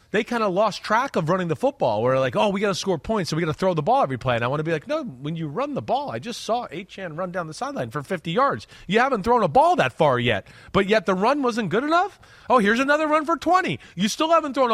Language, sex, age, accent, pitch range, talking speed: English, male, 30-49, American, 165-225 Hz, 300 wpm